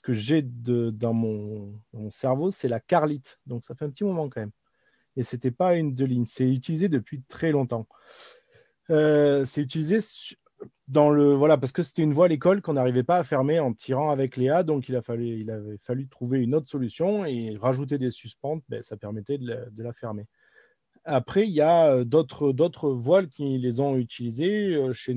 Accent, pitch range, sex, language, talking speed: French, 115-145 Hz, male, French, 210 wpm